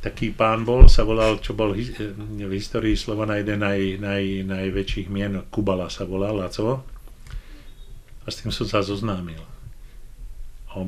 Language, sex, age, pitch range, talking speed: Czech, male, 40-59, 95-110 Hz, 150 wpm